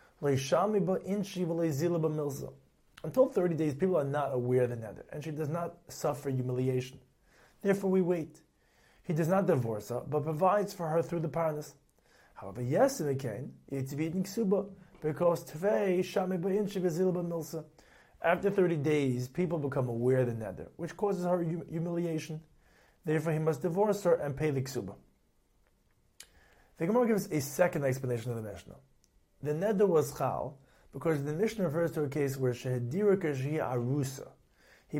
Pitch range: 135-180 Hz